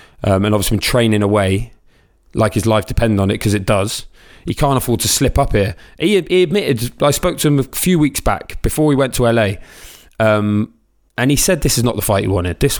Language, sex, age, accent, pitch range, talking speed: English, male, 20-39, British, 100-125 Hz, 235 wpm